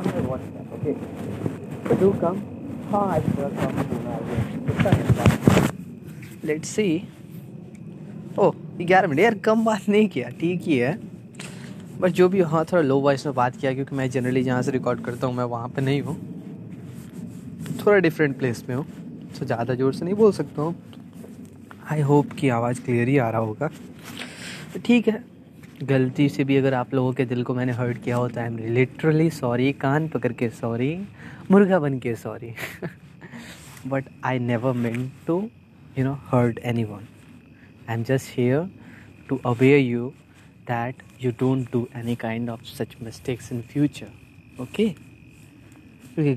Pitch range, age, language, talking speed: 120-155 Hz, 20-39, Hindi, 150 wpm